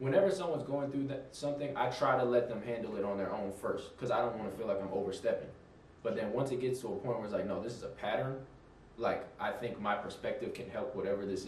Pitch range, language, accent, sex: 100-130 Hz, English, American, male